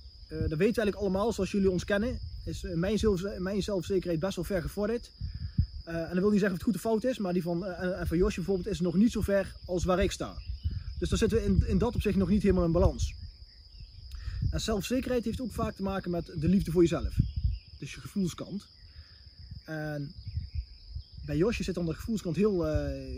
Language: Dutch